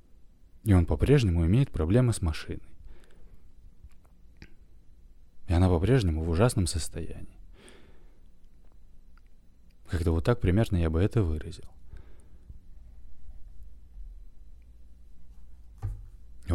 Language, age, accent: Russian, 30-49, native